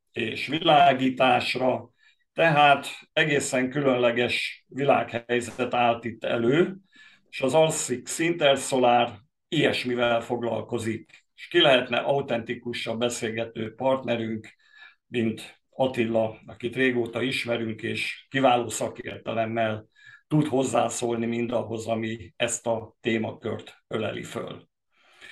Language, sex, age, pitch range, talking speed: Hungarian, male, 50-69, 115-140 Hz, 90 wpm